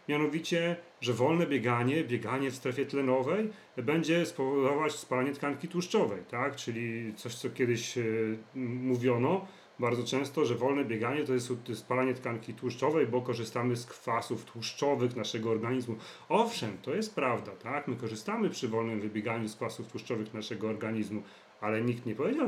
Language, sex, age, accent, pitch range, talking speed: Polish, male, 40-59, native, 115-140 Hz, 145 wpm